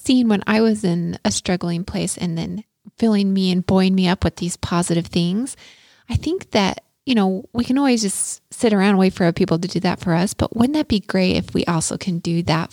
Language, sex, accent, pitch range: English, female, American, 180-220 Hz